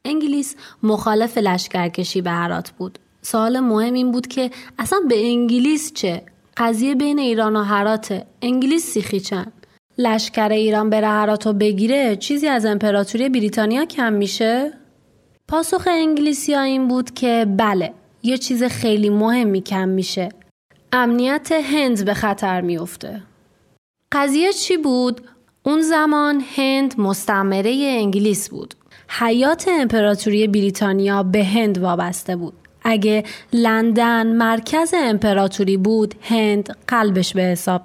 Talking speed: 120 wpm